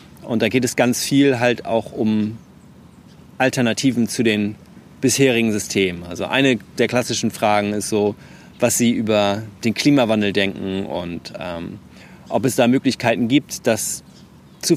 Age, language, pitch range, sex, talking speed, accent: 30-49, German, 110-130 Hz, male, 145 wpm, German